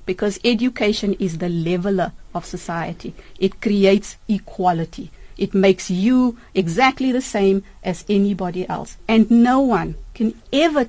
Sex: female